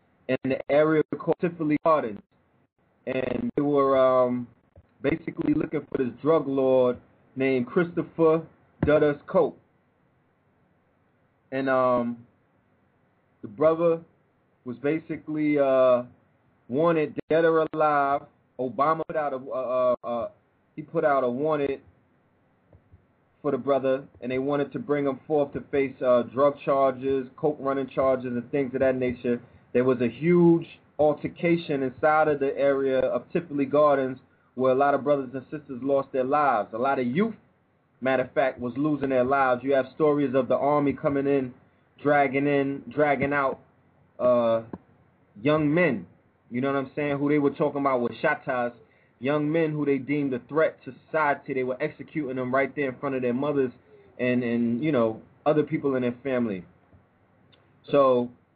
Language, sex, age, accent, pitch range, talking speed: English, male, 30-49, American, 125-150 Hz, 160 wpm